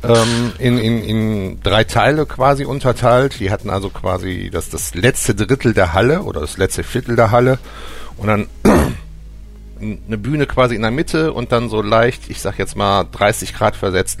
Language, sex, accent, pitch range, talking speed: German, male, German, 95-120 Hz, 175 wpm